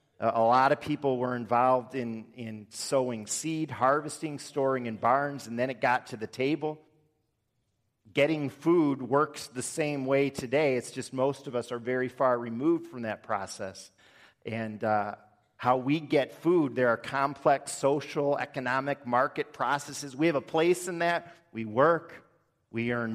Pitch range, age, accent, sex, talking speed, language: 120-145 Hz, 40-59, American, male, 165 wpm, English